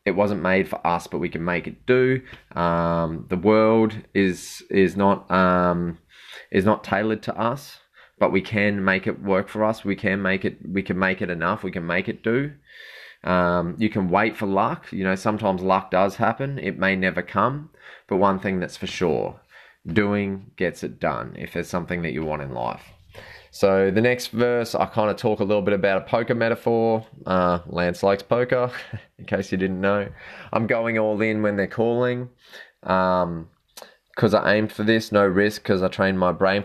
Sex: male